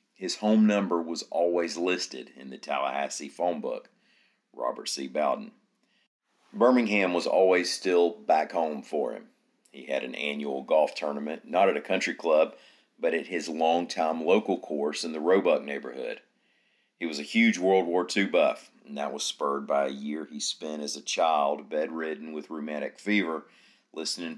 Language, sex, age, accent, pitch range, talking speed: English, male, 40-59, American, 75-105 Hz, 165 wpm